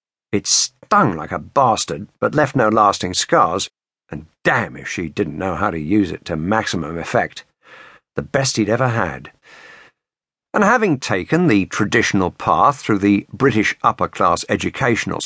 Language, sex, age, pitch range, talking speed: English, male, 50-69, 100-125 Hz, 155 wpm